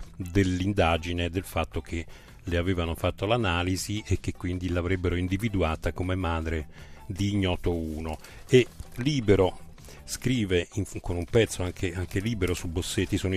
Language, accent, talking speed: Italian, native, 140 wpm